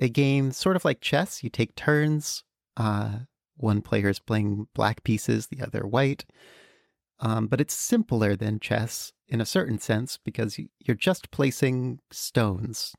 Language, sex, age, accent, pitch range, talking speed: English, male, 30-49, American, 105-140 Hz, 155 wpm